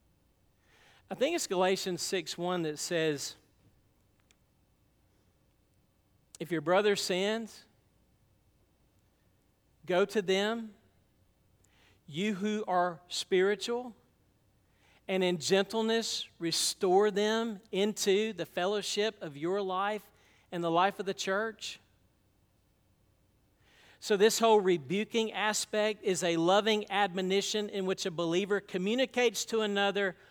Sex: male